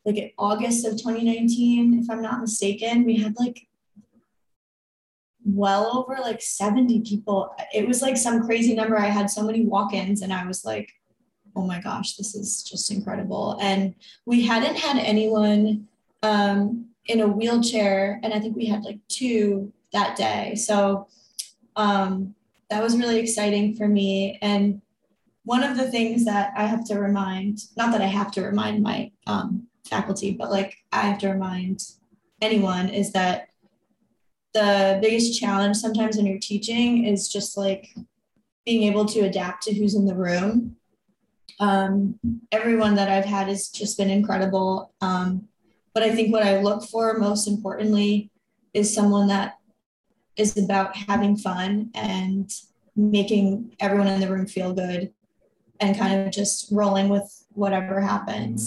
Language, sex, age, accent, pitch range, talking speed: English, female, 20-39, American, 195-220 Hz, 155 wpm